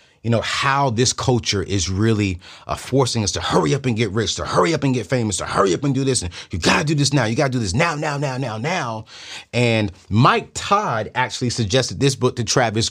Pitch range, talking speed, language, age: 95-140 Hz, 240 wpm, English, 30-49